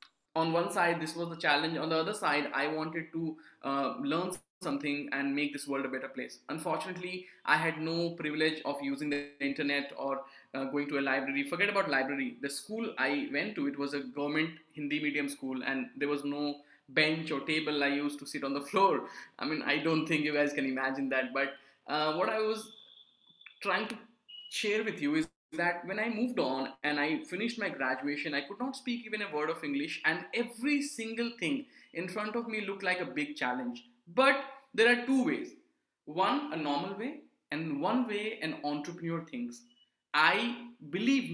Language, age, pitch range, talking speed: English, 20-39, 145-215 Hz, 200 wpm